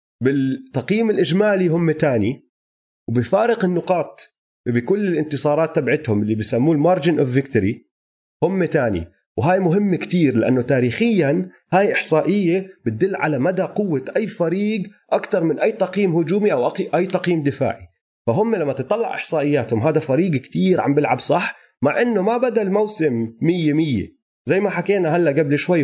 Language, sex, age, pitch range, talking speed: Arabic, male, 30-49, 115-180 Hz, 140 wpm